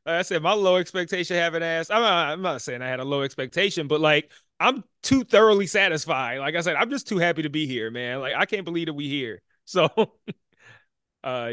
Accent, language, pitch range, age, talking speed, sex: American, English, 160-210 Hz, 30-49, 230 wpm, male